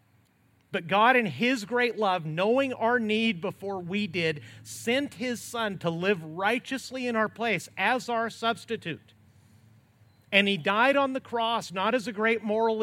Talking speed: 165 wpm